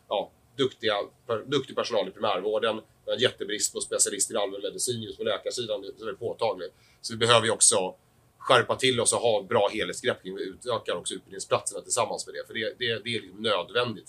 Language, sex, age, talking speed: Swedish, male, 30-49, 185 wpm